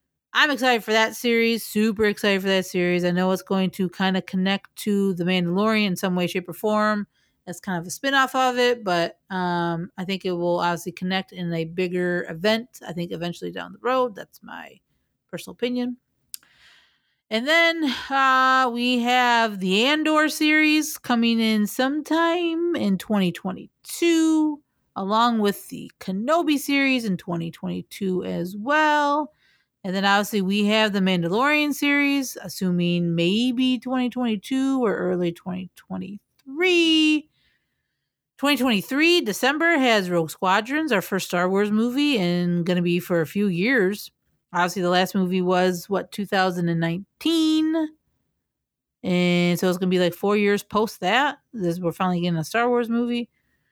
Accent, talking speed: American, 150 wpm